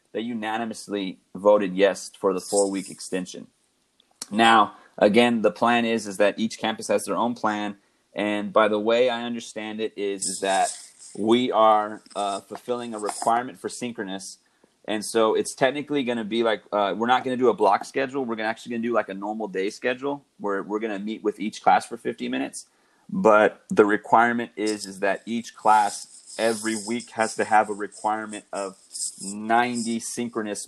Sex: male